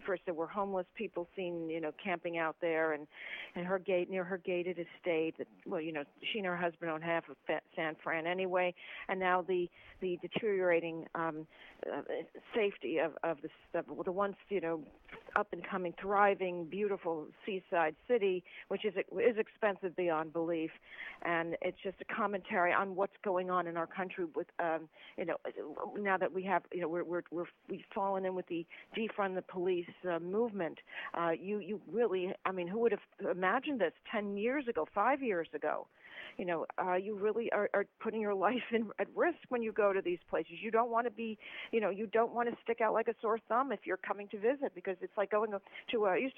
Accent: American